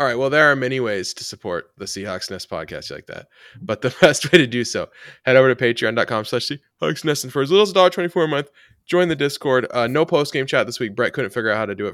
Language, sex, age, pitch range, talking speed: English, male, 20-39, 95-135 Hz, 280 wpm